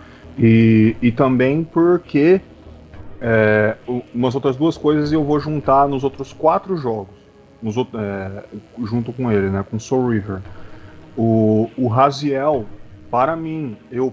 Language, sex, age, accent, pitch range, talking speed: Portuguese, male, 20-39, Brazilian, 105-130 Hz, 130 wpm